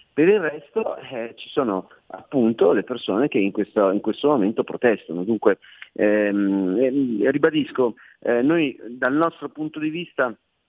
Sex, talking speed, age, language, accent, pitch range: male, 150 wpm, 40-59, Italian, native, 100-120 Hz